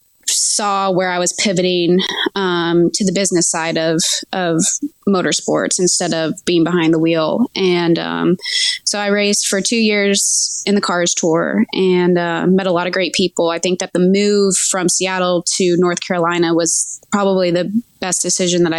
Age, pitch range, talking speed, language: 20-39, 175-205 Hz, 175 wpm, English